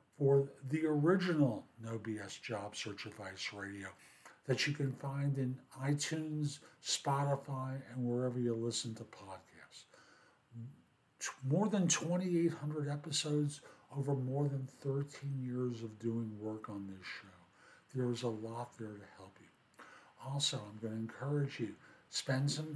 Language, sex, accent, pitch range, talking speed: English, male, American, 115-145 Hz, 140 wpm